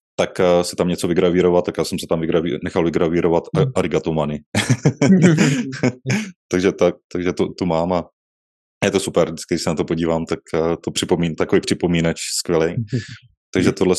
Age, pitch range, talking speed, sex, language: 20-39, 85-95 Hz, 175 wpm, male, Czech